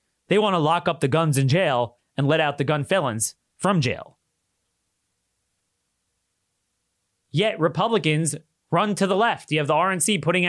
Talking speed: 160 wpm